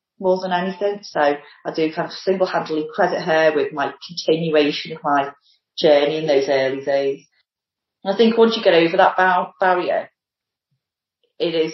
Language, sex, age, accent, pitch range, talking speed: English, female, 30-49, British, 150-195 Hz, 175 wpm